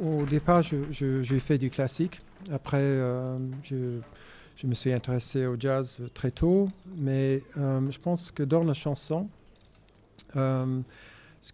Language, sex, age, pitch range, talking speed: French, male, 50-69, 120-140 Hz, 140 wpm